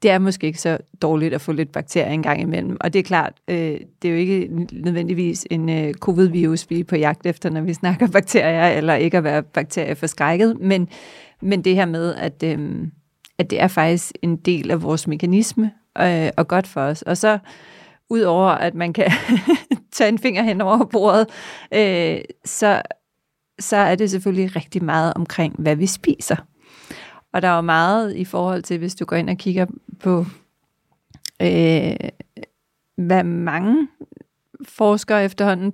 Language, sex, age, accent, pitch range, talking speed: Danish, female, 30-49, native, 165-200 Hz, 180 wpm